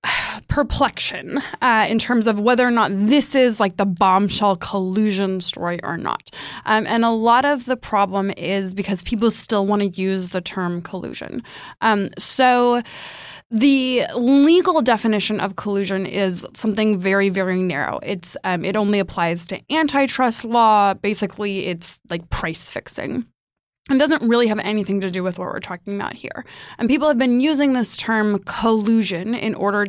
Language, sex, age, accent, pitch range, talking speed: English, female, 20-39, American, 190-235 Hz, 165 wpm